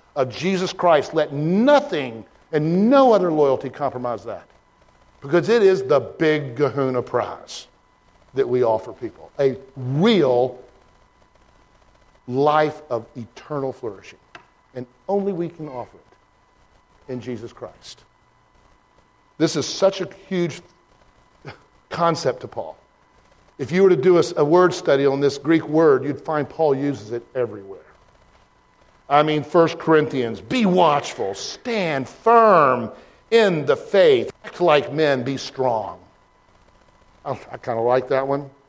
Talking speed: 135 wpm